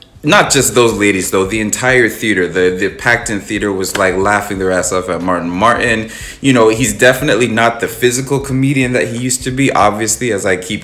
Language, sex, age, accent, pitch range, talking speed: English, male, 20-39, American, 90-110 Hz, 210 wpm